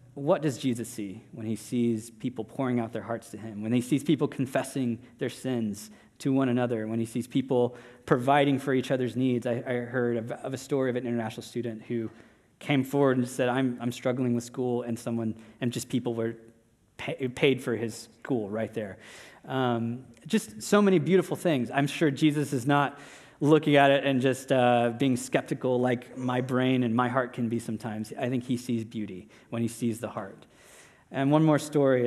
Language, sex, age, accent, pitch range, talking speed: English, male, 20-39, American, 115-135 Hz, 210 wpm